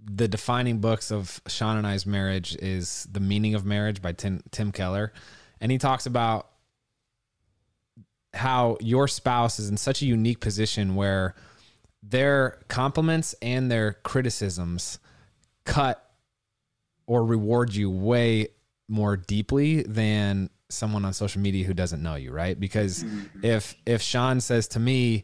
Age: 20-39